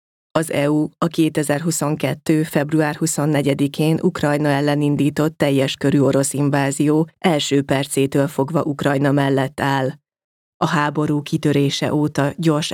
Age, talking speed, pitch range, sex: 30-49, 115 wpm, 140-155 Hz, female